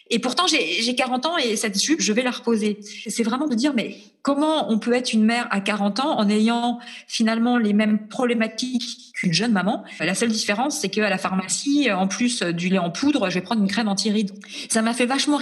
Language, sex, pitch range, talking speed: French, female, 195-240 Hz, 230 wpm